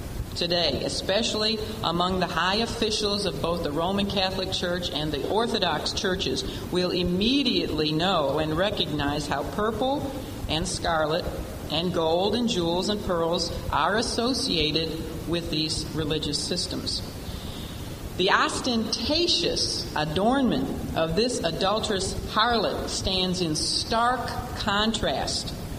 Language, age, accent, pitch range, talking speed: English, 50-69, American, 150-205 Hz, 110 wpm